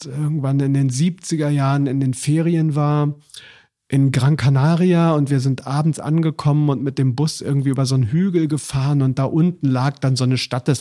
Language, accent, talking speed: German, German, 200 wpm